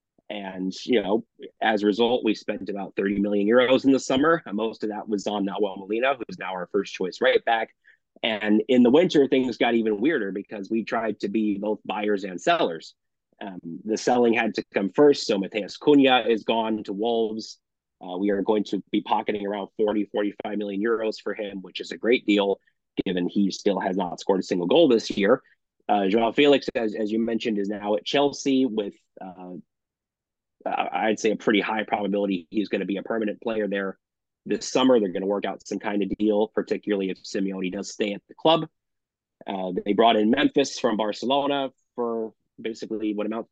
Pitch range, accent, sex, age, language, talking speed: 100-120 Hz, American, male, 30-49, English, 205 wpm